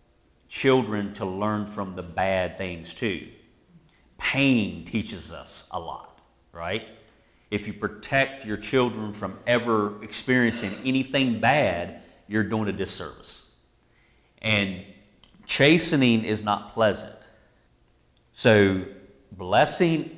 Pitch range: 100-130 Hz